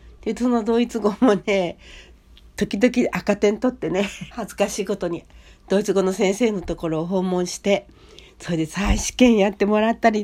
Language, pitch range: Japanese, 160-235 Hz